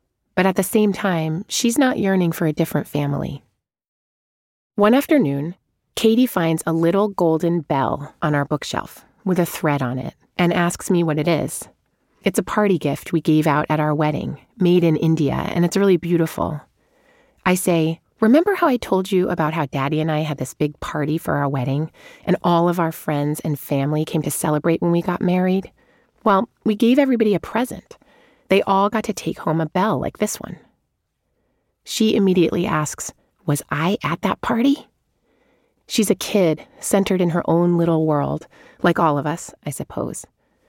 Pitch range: 150-200 Hz